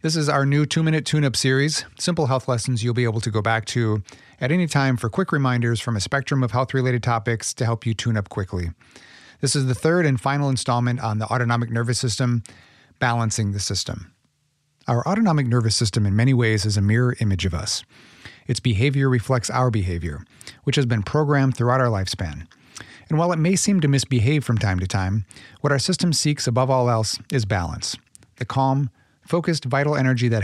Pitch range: 110-140 Hz